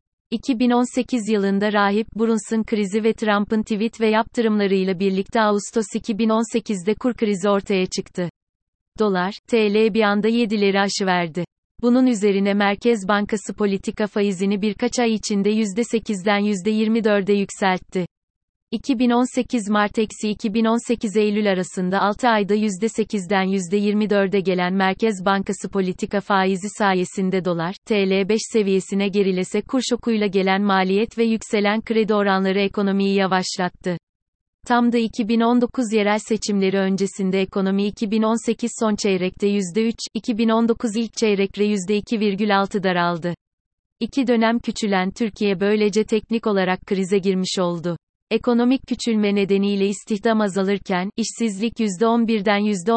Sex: female